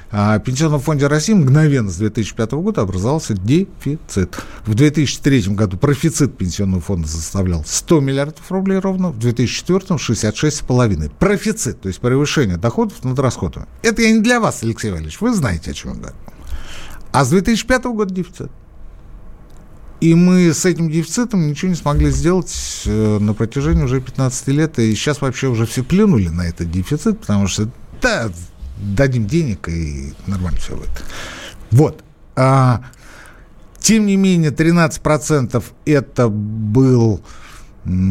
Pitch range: 95-150 Hz